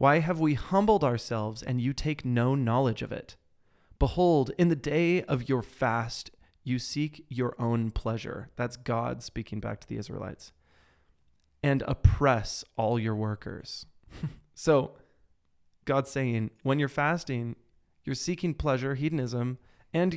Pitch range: 115-145 Hz